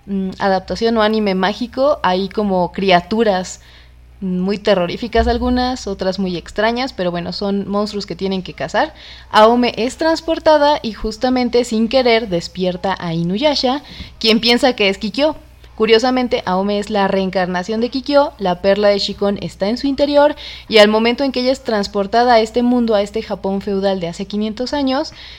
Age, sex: 20-39, female